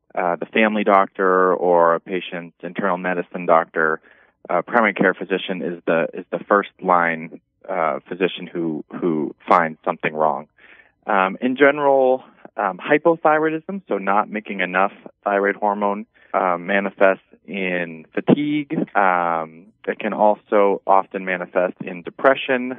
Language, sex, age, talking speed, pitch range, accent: English, male, 20-39, 130 wpm, 85-105 Hz, American